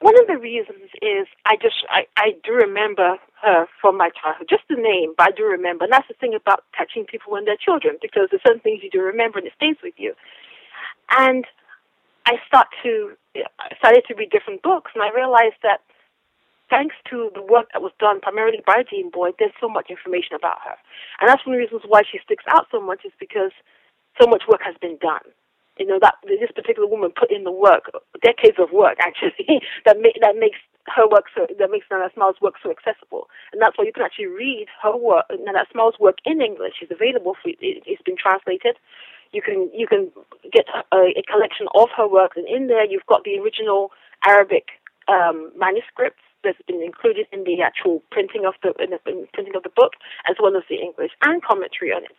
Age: 40-59